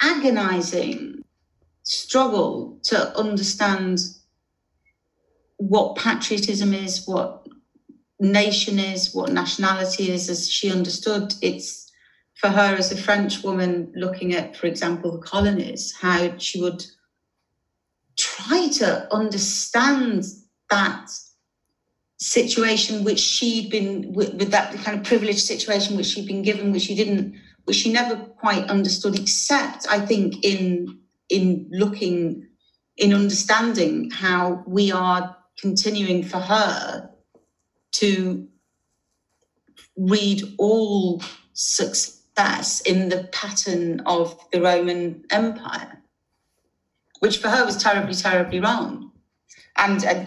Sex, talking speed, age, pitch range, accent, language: female, 110 wpm, 40-59, 180-210 Hz, British, English